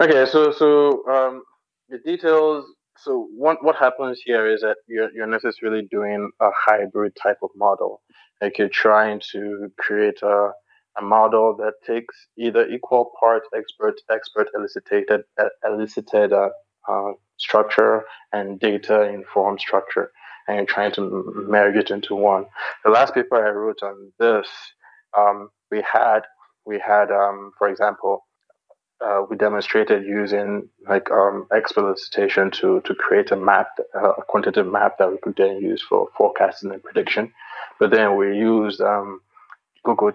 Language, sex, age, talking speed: English, male, 20-39, 150 wpm